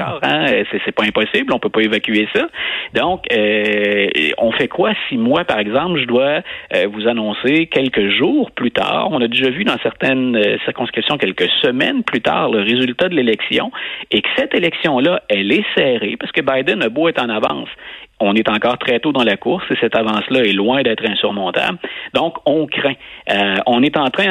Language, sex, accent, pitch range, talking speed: French, male, Canadian, 105-130 Hz, 195 wpm